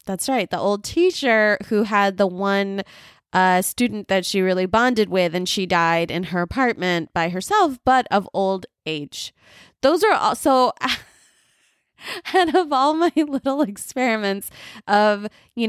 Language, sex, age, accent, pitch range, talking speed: English, female, 20-39, American, 180-235 Hz, 150 wpm